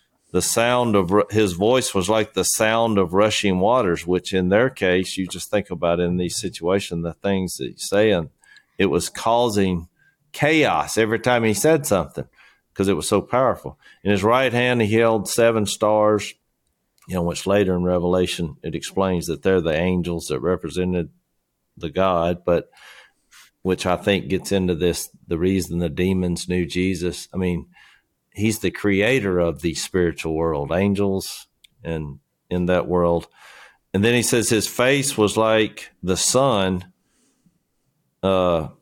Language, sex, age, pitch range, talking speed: English, male, 40-59, 90-105 Hz, 160 wpm